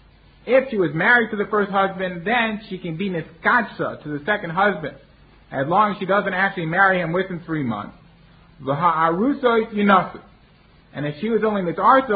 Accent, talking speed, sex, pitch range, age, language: American, 170 wpm, male, 170-215 Hz, 50-69, English